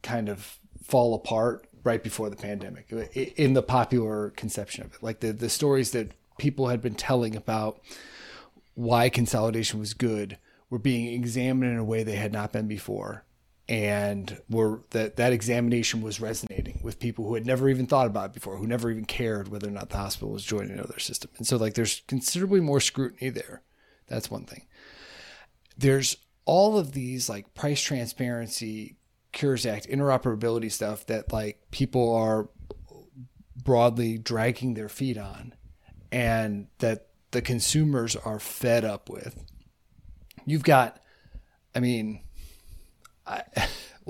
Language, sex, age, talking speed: English, male, 30-49, 155 wpm